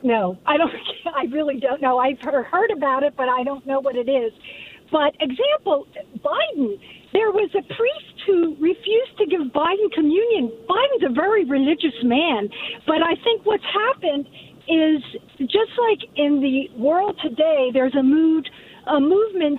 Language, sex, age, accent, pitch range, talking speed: English, female, 50-69, American, 270-350 Hz, 160 wpm